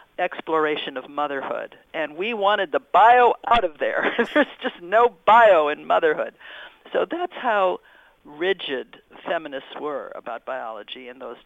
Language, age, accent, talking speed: English, 50-69, American, 140 wpm